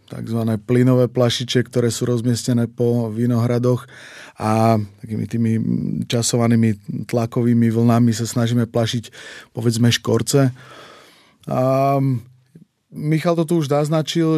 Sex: male